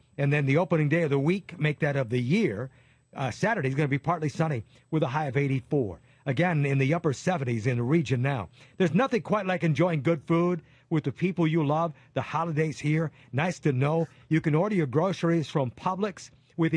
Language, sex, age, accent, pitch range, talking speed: English, male, 50-69, American, 140-170 Hz, 215 wpm